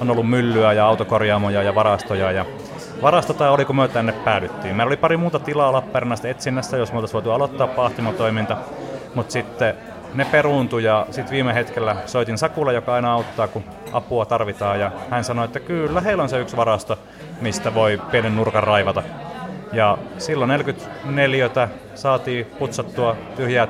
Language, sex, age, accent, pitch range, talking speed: Finnish, male, 30-49, native, 105-130 Hz, 165 wpm